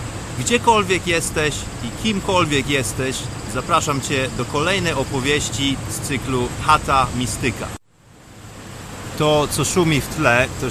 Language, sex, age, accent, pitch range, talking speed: Polish, male, 30-49, native, 115-145 Hz, 110 wpm